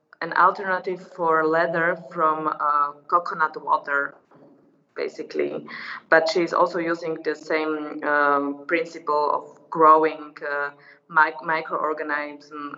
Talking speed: 100 wpm